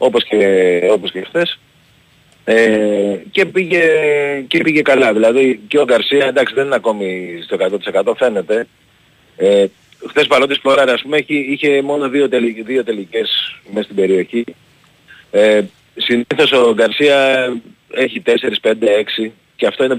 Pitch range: 110-140 Hz